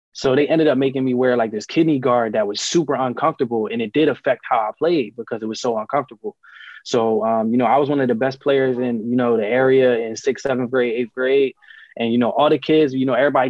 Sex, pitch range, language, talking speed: male, 125-140 Hz, English, 260 wpm